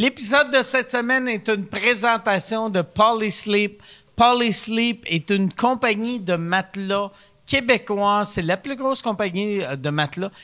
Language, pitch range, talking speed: French, 170-240 Hz, 130 wpm